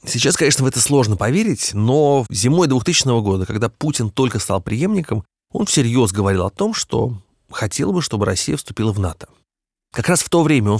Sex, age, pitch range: male, 30-49, 105-140 Hz